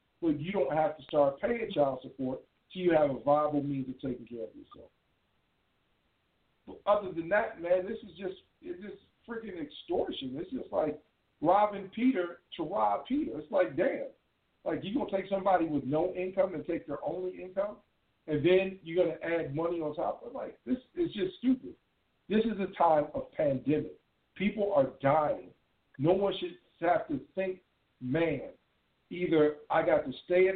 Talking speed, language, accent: 185 wpm, English, American